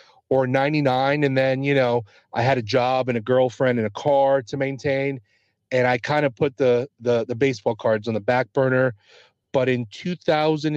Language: English